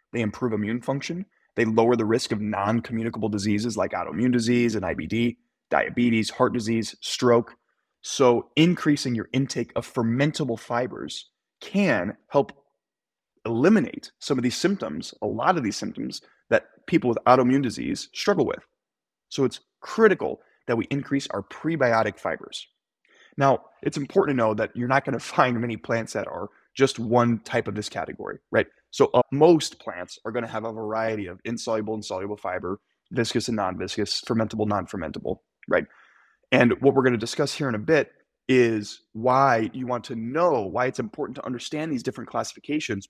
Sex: male